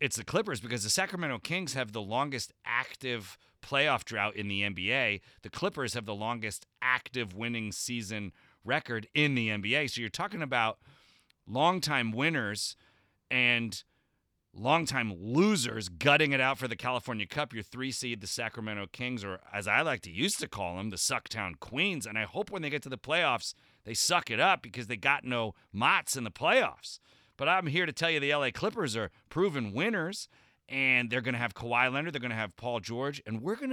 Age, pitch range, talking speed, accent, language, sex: 30-49, 115-150 Hz, 195 wpm, American, English, male